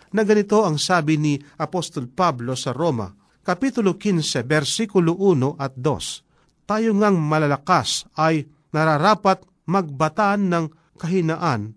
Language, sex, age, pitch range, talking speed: Filipino, male, 40-59, 135-180 Hz, 115 wpm